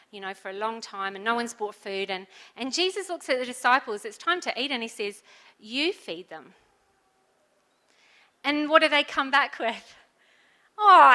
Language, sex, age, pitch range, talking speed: English, female, 40-59, 235-355 Hz, 195 wpm